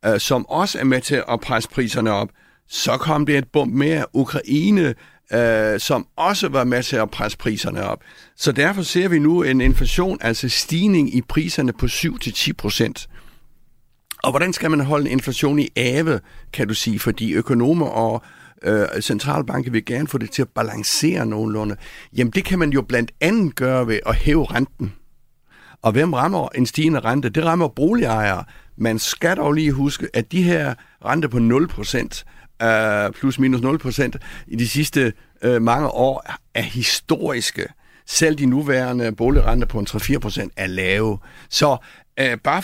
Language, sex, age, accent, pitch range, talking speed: Danish, male, 60-79, native, 115-150 Hz, 170 wpm